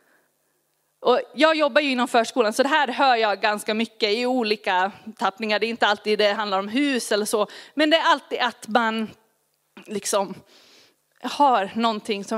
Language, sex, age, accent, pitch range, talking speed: Swedish, female, 30-49, native, 210-275 Hz, 175 wpm